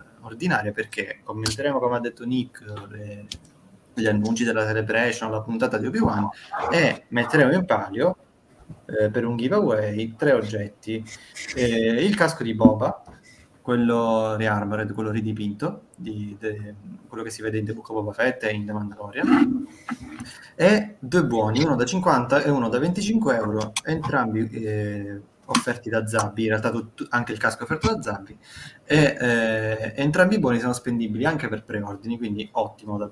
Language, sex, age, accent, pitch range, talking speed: Italian, male, 20-39, native, 110-125 Hz, 165 wpm